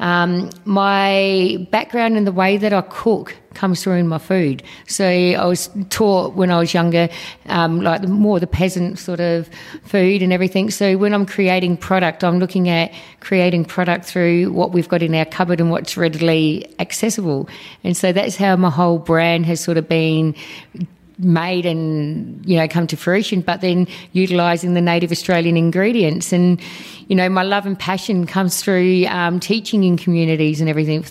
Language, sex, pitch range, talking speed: English, female, 170-190 Hz, 180 wpm